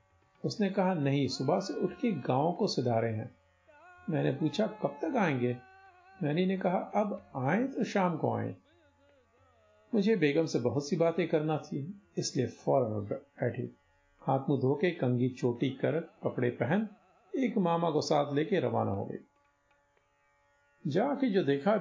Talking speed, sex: 150 wpm, male